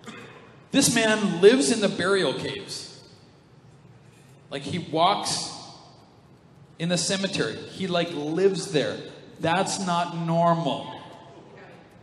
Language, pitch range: English, 135-175 Hz